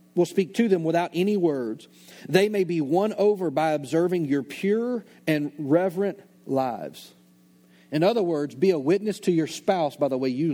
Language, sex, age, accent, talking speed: English, male, 40-59, American, 180 wpm